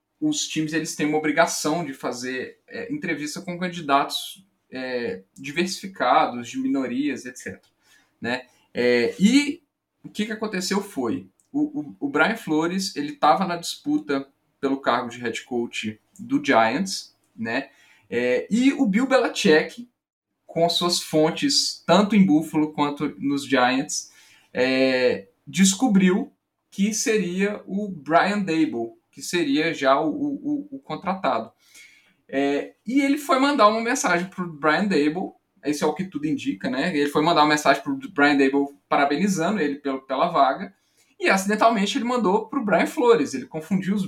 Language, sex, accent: Portuguese, male, Brazilian